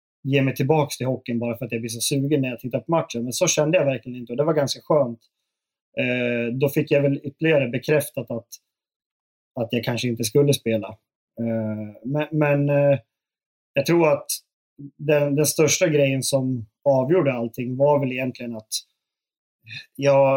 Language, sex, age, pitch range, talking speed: Swedish, male, 30-49, 120-145 Hz, 175 wpm